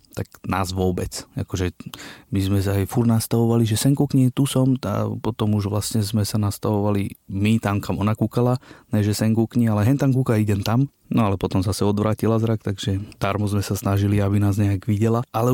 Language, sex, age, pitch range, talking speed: Slovak, male, 30-49, 100-115 Hz, 200 wpm